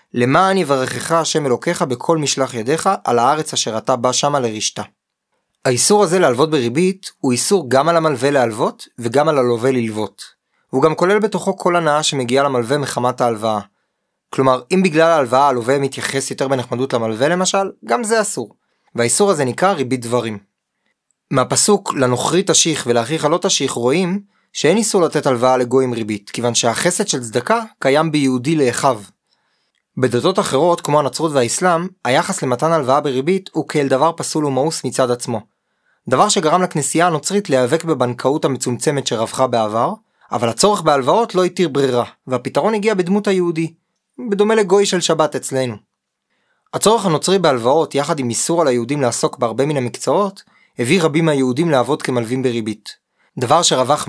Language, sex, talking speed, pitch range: Hebrew, male, 145 wpm, 125-175 Hz